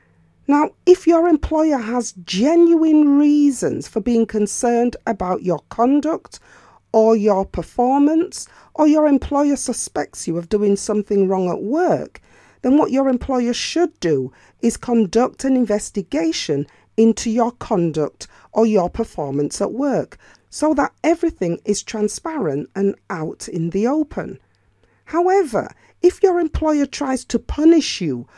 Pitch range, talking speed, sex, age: 195-295 Hz, 135 wpm, female, 40-59